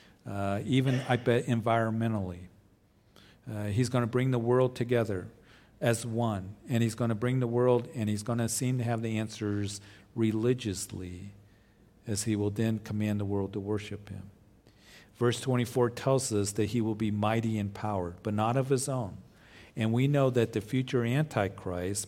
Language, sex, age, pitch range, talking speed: English, male, 50-69, 105-120 Hz, 175 wpm